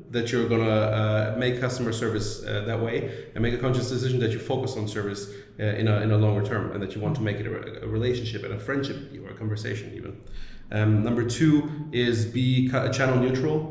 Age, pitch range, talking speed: 30-49, 105-125 Hz, 230 wpm